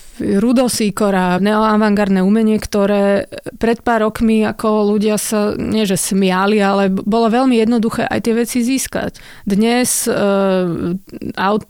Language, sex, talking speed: Slovak, female, 120 wpm